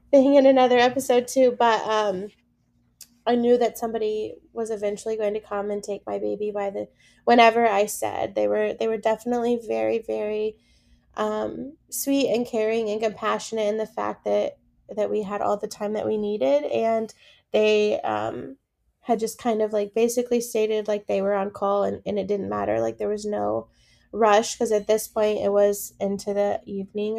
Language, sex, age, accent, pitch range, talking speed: English, female, 20-39, American, 200-230 Hz, 185 wpm